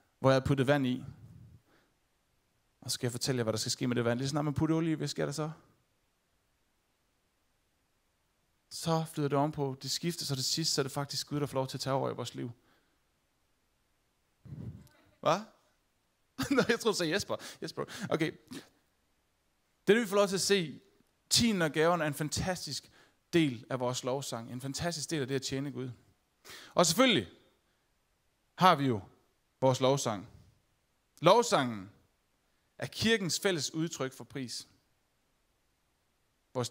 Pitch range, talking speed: 125-175 Hz, 165 wpm